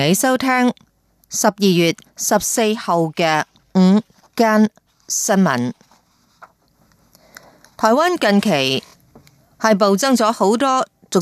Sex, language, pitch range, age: female, Chinese, 170-225 Hz, 30-49